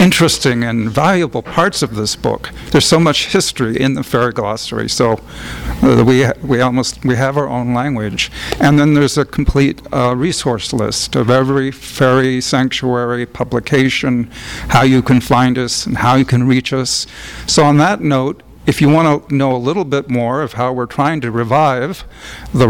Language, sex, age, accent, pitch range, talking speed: English, male, 50-69, American, 125-145 Hz, 180 wpm